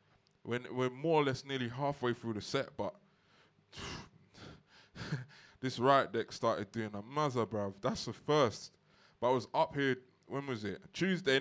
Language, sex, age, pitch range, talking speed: English, male, 20-39, 105-145 Hz, 170 wpm